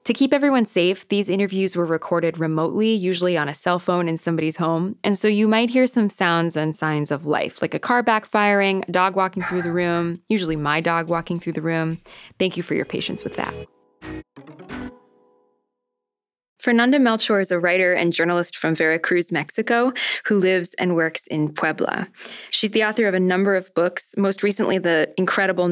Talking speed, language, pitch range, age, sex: 185 wpm, English, 165-195 Hz, 20-39, female